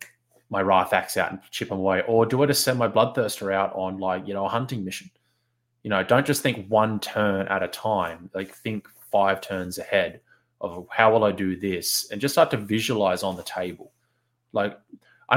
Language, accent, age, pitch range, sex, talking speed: English, Australian, 20-39, 95-120 Hz, male, 210 wpm